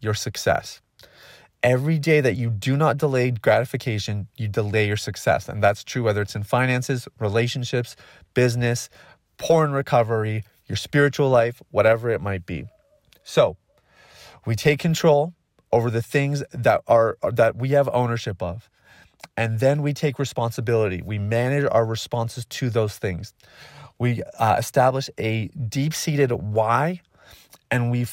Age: 30-49